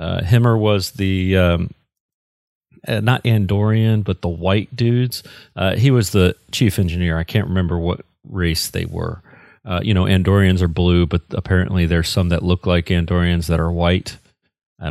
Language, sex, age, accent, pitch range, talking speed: English, male, 40-59, American, 90-120 Hz, 175 wpm